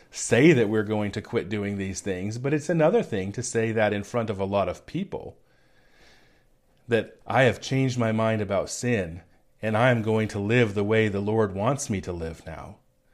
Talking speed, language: 205 wpm, English